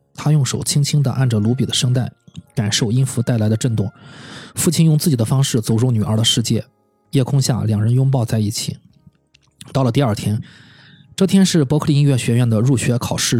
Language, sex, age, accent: Chinese, male, 20-39, native